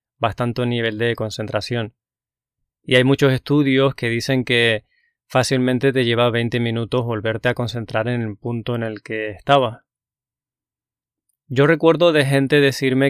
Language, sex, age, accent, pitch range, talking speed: Spanish, male, 20-39, Spanish, 115-140 Hz, 140 wpm